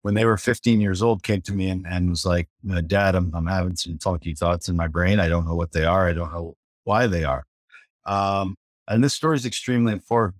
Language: English